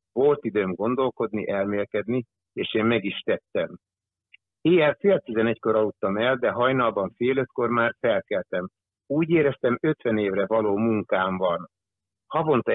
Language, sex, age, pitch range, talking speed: Hungarian, male, 60-79, 95-125 Hz, 130 wpm